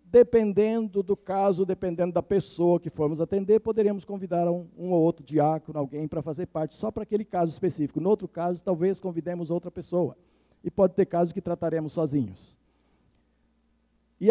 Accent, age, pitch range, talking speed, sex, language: Brazilian, 60-79, 155-220 Hz, 170 wpm, male, Portuguese